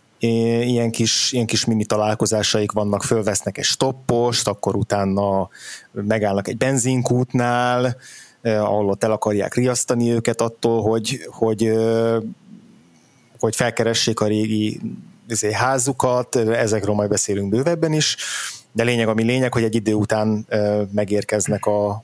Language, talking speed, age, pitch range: Hungarian, 115 wpm, 20-39, 105-120 Hz